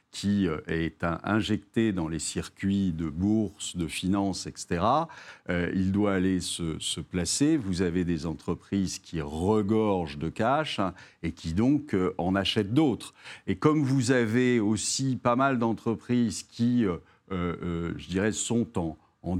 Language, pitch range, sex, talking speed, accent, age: French, 90-120 Hz, male, 155 wpm, French, 60-79